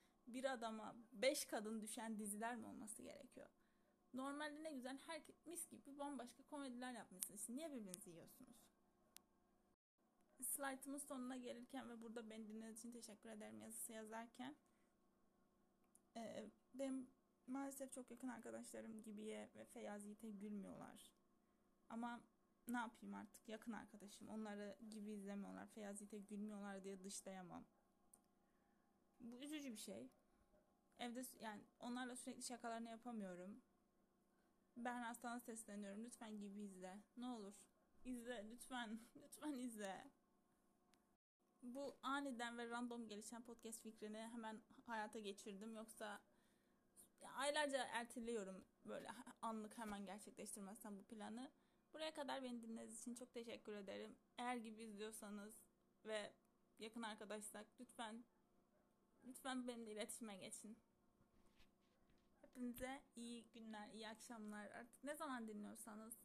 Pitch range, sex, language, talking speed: 210-250 Hz, female, Turkish, 115 wpm